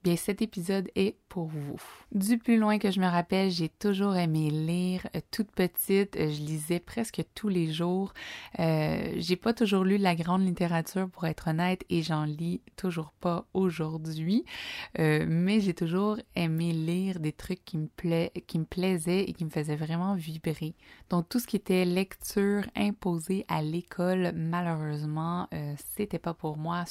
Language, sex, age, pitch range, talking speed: French, female, 20-39, 155-190 Hz, 170 wpm